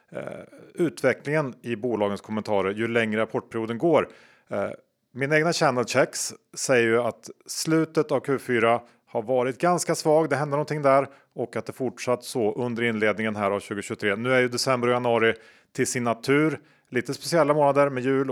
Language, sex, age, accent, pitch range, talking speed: Swedish, male, 40-59, Norwegian, 115-140 Hz, 165 wpm